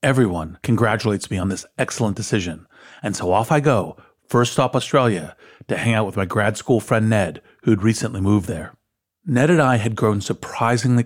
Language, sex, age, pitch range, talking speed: English, male, 40-59, 105-130 Hz, 185 wpm